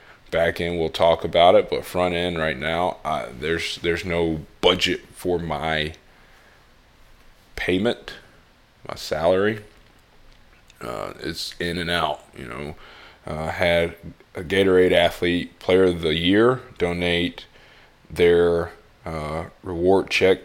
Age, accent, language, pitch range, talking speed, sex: 20-39, American, English, 80-95 Hz, 125 wpm, male